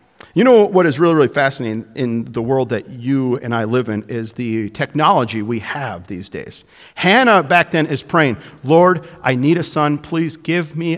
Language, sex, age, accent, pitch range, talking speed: English, male, 50-69, American, 125-175 Hz, 195 wpm